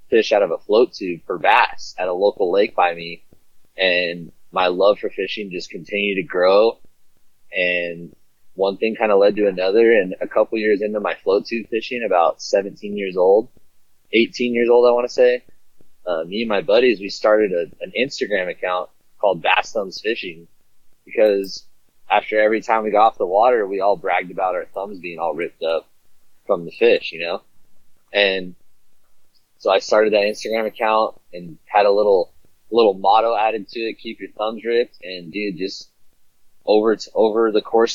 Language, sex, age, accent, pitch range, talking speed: English, male, 20-39, American, 100-120 Hz, 180 wpm